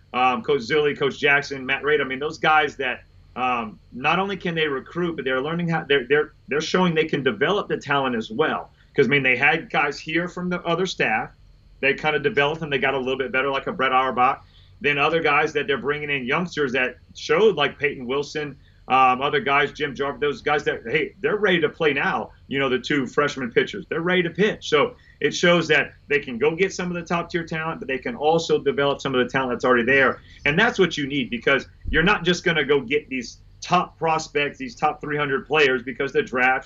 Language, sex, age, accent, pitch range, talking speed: English, male, 40-59, American, 140-175 Hz, 230 wpm